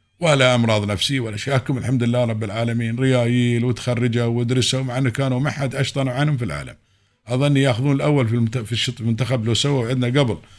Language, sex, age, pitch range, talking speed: Arabic, male, 50-69, 105-135 Hz, 180 wpm